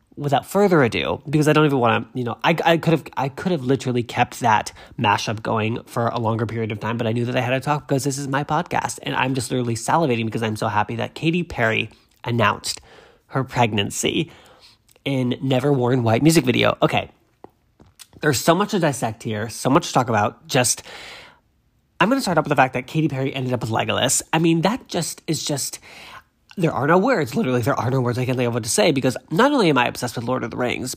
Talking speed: 235 wpm